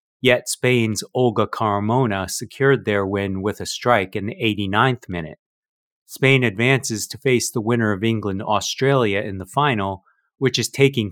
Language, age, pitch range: English, 30-49, 100-120 Hz